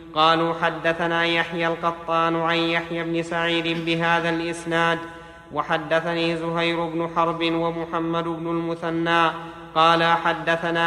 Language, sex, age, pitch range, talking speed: Arabic, male, 30-49, 165-170 Hz, 105 wpm